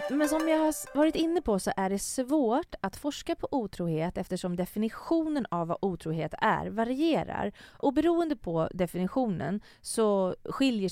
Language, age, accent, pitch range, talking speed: English, 30-49, Swedish, 170-235 Hz, 155 wpm